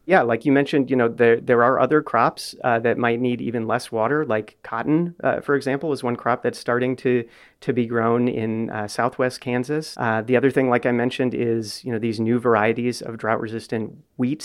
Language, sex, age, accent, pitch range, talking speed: English, male, 30-49, American, 115-130 Hz, 220 wpm